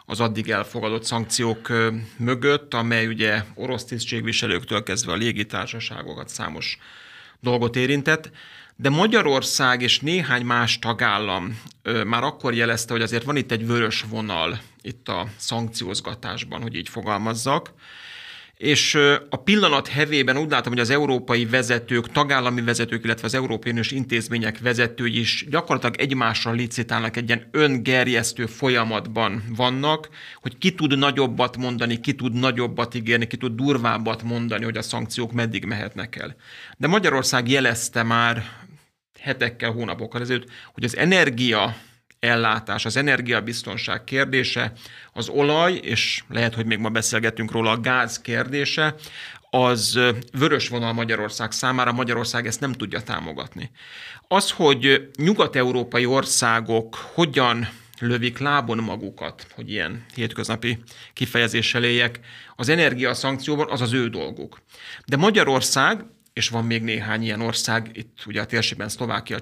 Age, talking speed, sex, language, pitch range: 30-49, 130 wpm, male, Hungarian, 115-130 Hz